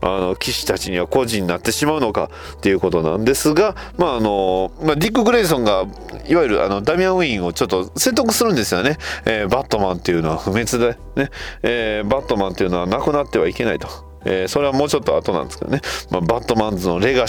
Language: Japanese